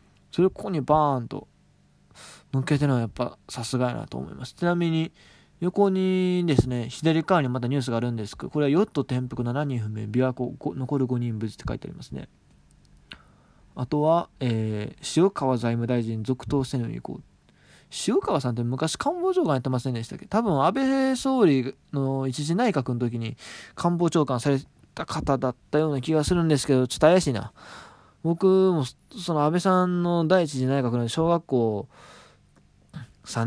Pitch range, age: 120-165 Hz, 20-39